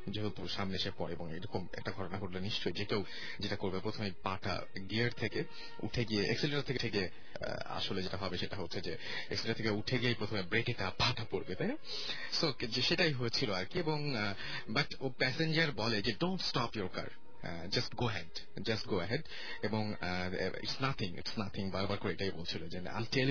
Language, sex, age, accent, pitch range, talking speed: Bengali, male, 30-49, native, 100-125 Hz, 180 wpm